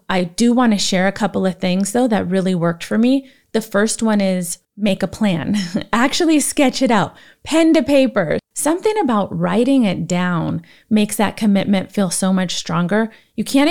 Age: 30-49